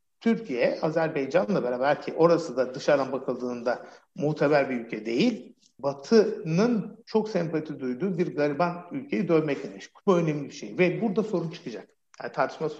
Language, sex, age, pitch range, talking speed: Turkish, male, 60-79, 135-175 Hz, 145 wpm